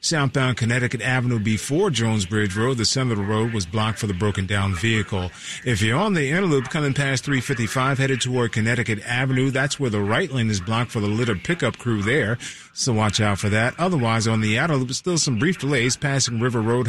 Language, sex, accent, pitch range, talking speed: English, male, American, 110-140 Hz, 215 wpm